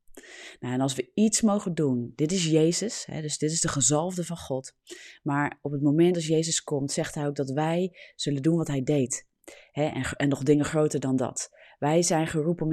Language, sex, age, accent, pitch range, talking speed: Dutch, female, 30-49, Dutch, 135-160 Hz, 220 wpm